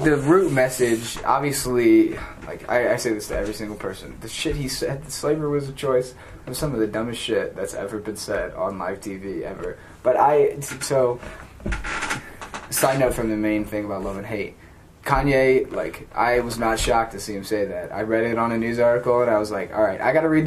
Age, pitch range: 10-29, 110-145 Hz